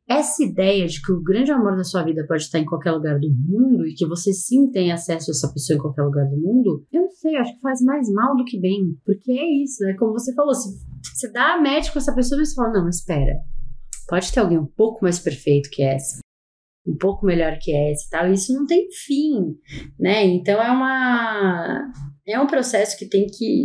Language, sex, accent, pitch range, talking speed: Portuguese, female, Brazilian, 160-220 Hz, 230 wpm